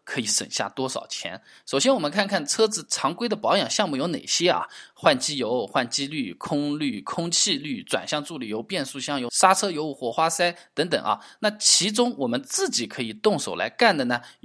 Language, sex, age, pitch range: Chinese, male, 20-39, 130-200 Hz